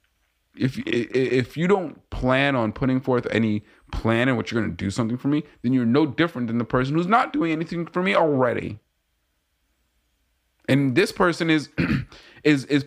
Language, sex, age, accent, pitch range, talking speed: English, male, 20-39, American, 105-155 Hz, 180 wpm